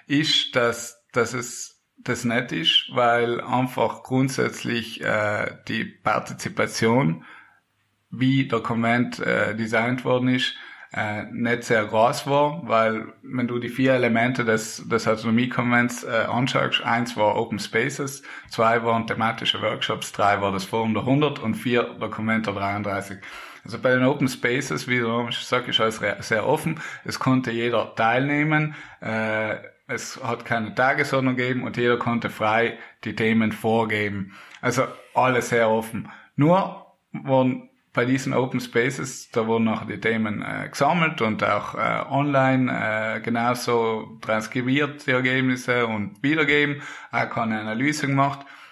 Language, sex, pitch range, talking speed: English, male, 110-135 Hz, 145 wpm